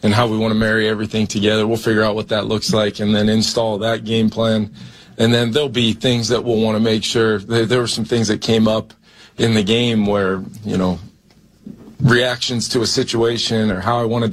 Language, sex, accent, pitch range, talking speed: English, male, American, 105-115 Hz, 220 wpm